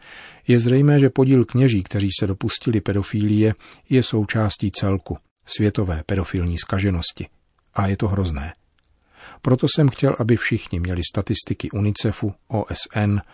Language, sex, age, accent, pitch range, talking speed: Czech, male, 40-59, native, 90-115 Hz, 125 wpm